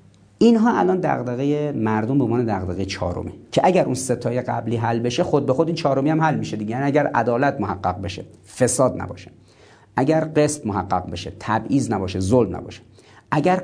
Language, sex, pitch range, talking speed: Persian, male, 105-150 Hz, 170 wpm